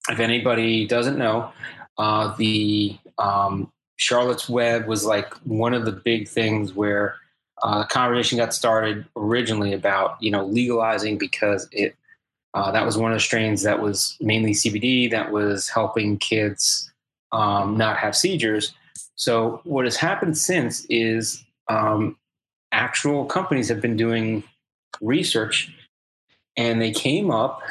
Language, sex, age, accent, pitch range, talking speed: English, male, 20-39, American, 105-120 Hz, 140 wpm